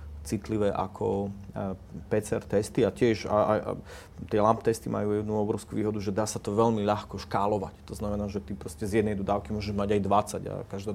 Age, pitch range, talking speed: 30-49, 95-105 Hz, 195 wpm